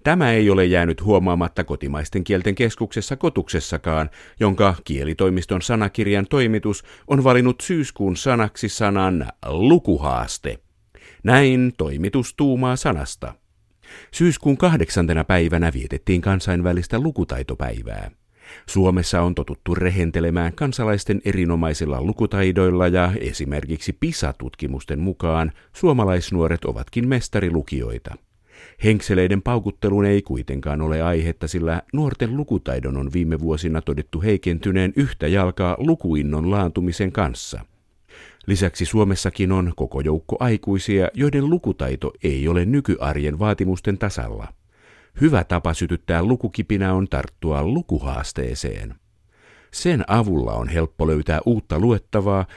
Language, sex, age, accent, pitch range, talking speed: Finnish, male, 50-69, native, 80-105 Hz, 100 wpm